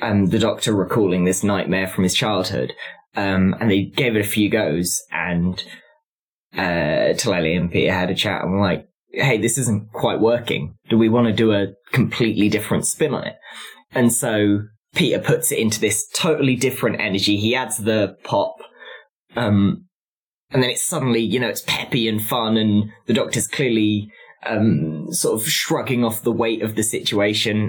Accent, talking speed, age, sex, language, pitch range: British, 180 wpm, 20-39, male, English, 105-140 Hz